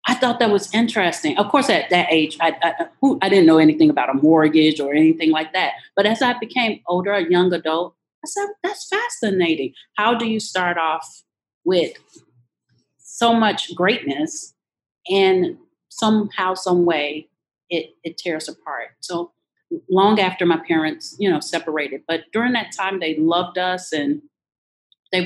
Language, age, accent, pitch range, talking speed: English, 40-59, American, 160-215 Hz, 165 wpm